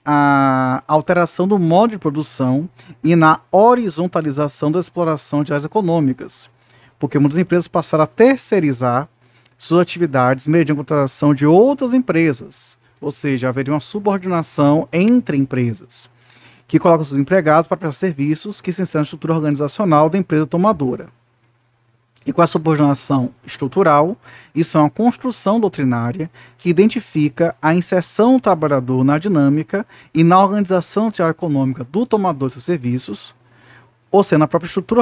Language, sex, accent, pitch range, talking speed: Portuguese, male, Brazilian, 135-180 Hz, 140 wpm